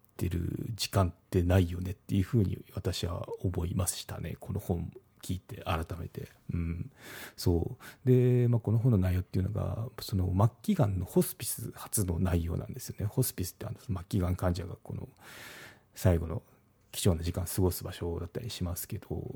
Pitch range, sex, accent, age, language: 90-115 Hz, male, native, 40-59, Japanese